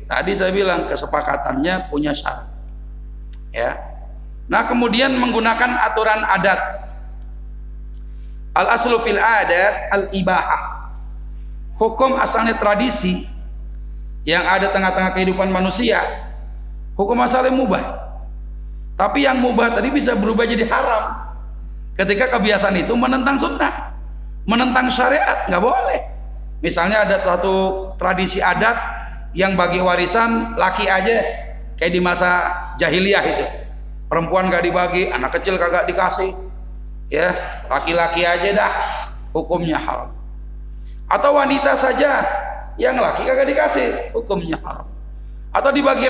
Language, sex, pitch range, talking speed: Indonesian, male, 145-230 Hz, 110 wpm